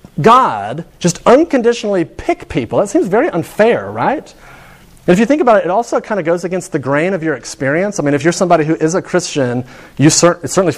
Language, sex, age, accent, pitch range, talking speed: English, male, 40-59, American, 135-180 Hz, 205 wpm